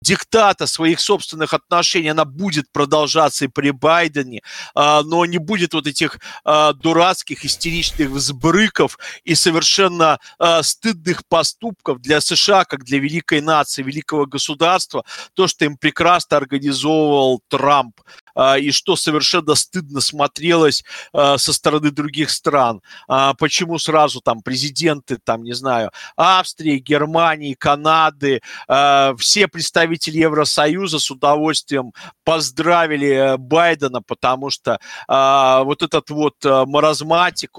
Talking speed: 110 wpm